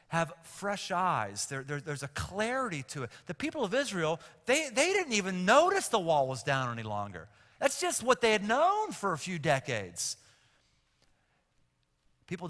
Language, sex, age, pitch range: English, male, 50-69, 135-205 Hz